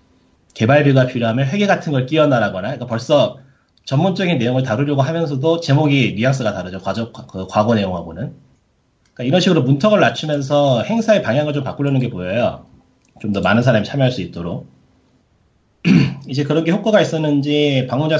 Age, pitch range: 30-49, 115-150 Hz